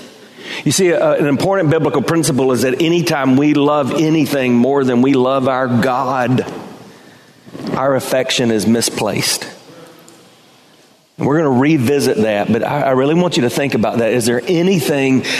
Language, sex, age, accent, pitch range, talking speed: English, male, 40-59, American, 130-180 Hz, 165 wpm